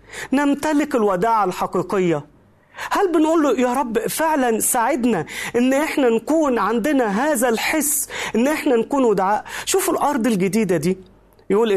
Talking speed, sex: 125 wpm, male